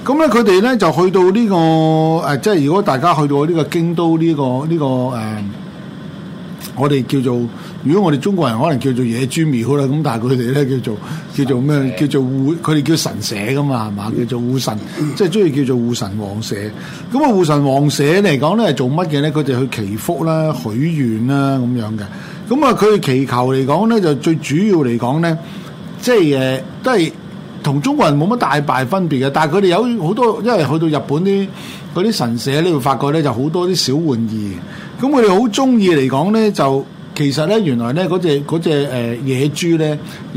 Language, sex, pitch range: Chinese, male, 135-185 Hz